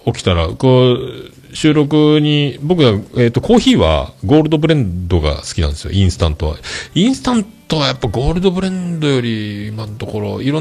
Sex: male